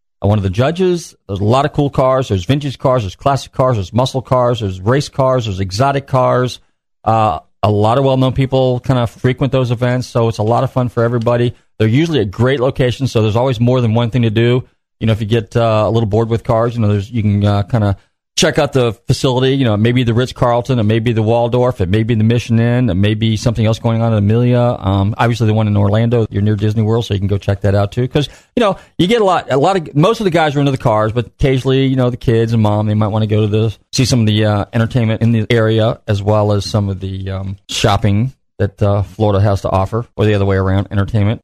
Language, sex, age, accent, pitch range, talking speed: English, male, 40-59, American, 105-130 Hz, 270 wpm